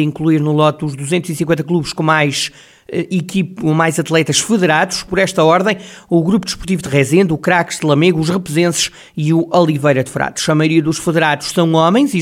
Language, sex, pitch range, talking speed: Portuguese, male, 150-185 Hz, 180 wpm